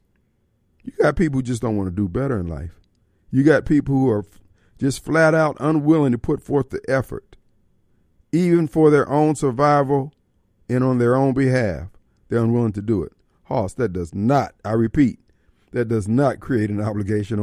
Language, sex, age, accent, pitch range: Japanese, male, 50-69, American, 110-160 Hz